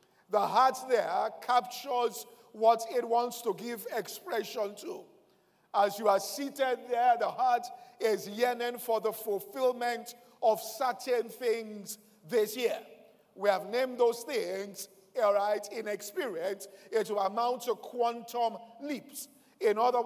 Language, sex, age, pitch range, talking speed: English, male, 50-69, 210-250 Hz, 135 wpm